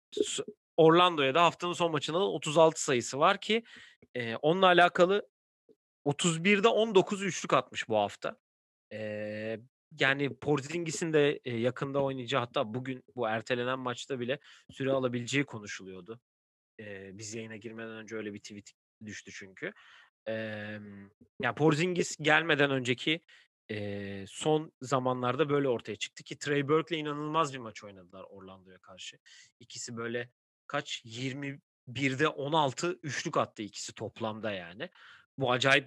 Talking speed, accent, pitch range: 120 wpm, native, 110-155 Hz